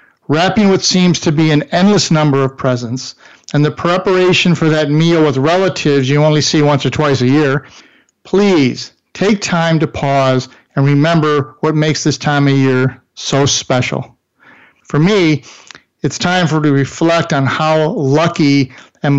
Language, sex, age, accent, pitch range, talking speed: English, male, 50-69, American, 135-160 Hz, 165 wpm